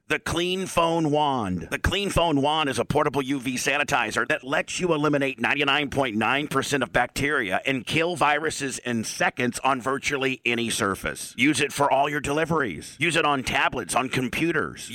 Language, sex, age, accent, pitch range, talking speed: English, male, 50-69, American, 130-155 Hz, 165 wpm